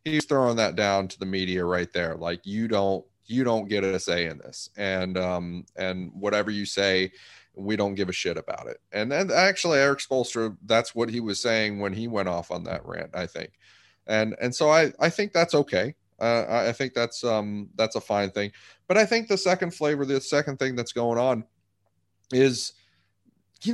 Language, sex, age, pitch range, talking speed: English, male, 30-49, 100-150 Hz, 205 wpm